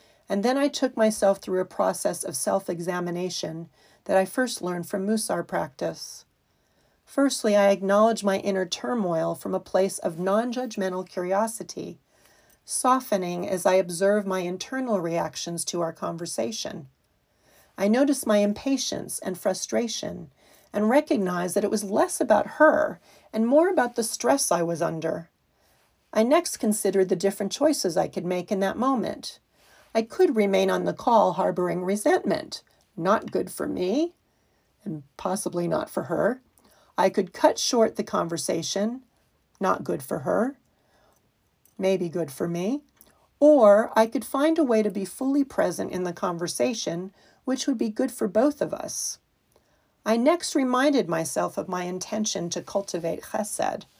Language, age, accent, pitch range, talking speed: English, 40-59, American, 180-255 Hz, 150 wpm